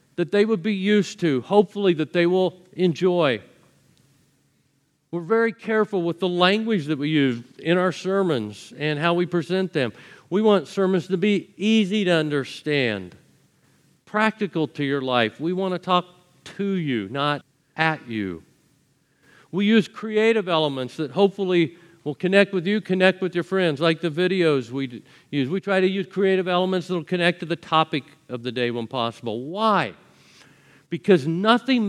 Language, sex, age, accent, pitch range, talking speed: English, male, 50-69, American, 140-185 Hz, 165 wpm